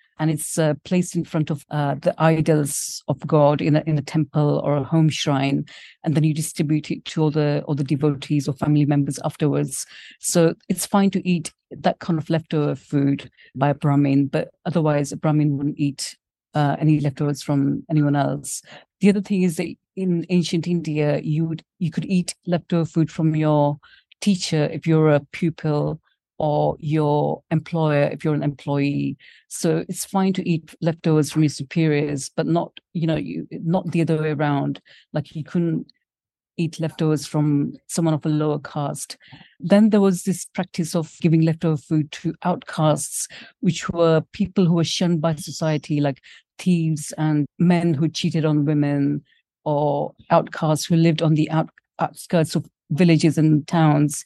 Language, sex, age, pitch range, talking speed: English, female, 50-69, 150-170 Hz, 175 wpm